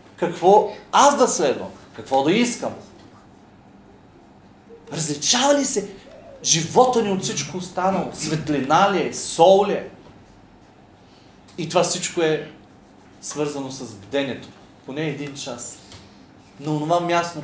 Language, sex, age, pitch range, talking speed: Bulgarian, male, 40-59, 120-155 Hz, 115 wpm